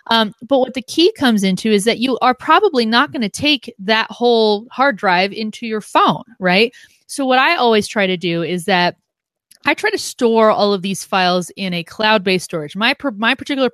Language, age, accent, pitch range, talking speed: English, 30-49, American, 180-225 Hz, 210 wpm